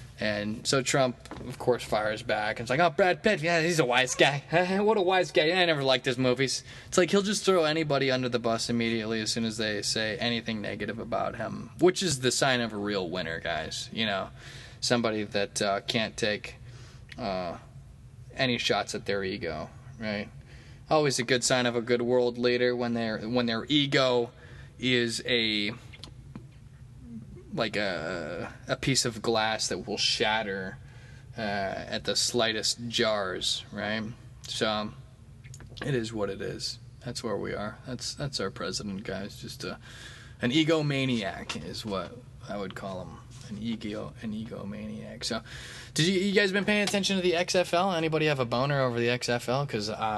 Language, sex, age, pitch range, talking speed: English, male, 20-39, 115-130 Hz, 175 wpm